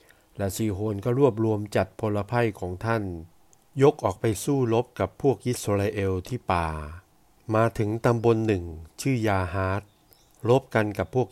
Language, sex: Thai, male